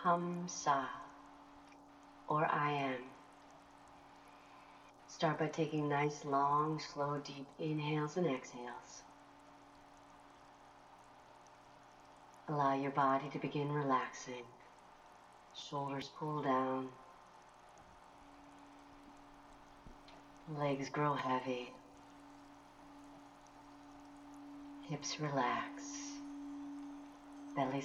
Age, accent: 40-59, American